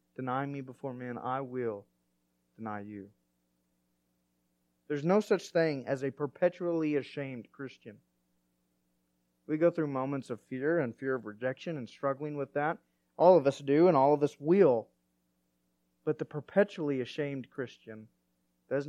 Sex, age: male, 30-49